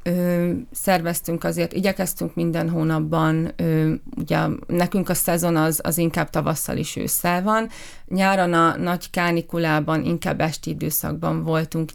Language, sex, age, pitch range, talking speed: Hungarian, female, 30-49, 160-180 Hz, 130 wpm